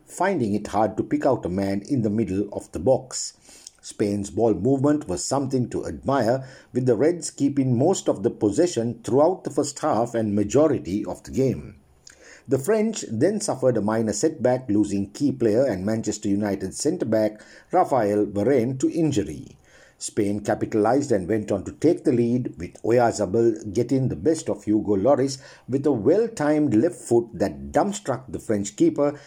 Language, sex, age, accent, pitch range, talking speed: English, male, 60-79, Indian, 105-145 Hz, 170 wpm